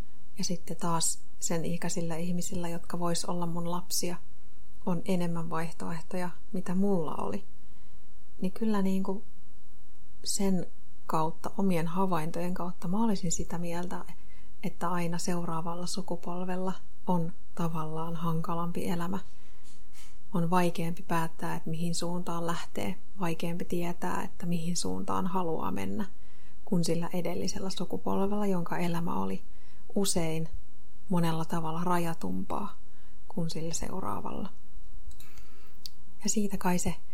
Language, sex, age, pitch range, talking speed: Finnish, female, 30-49, 165-185 Hz, 110 wpm